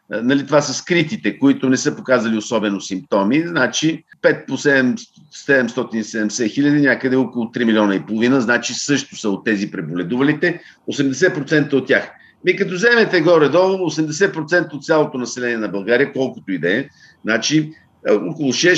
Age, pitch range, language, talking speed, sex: 50-69, 135-175 Hz, Bulgarian, 145 wpm, male